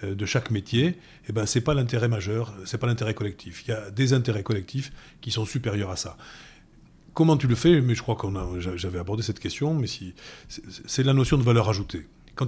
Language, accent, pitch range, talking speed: French, French, 95-130 Hz, 225 wpm